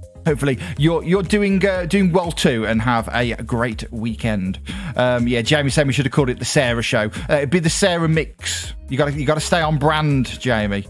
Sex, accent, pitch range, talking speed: male, British, 125-180 Hz, 225 wpm